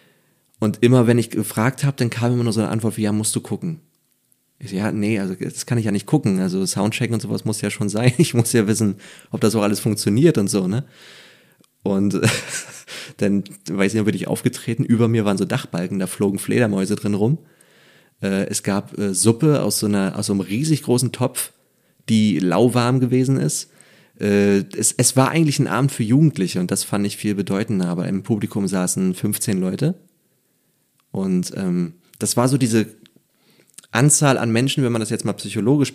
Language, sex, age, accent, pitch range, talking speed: German, male, 30-49, German, 100-130 Hz, 205 wpm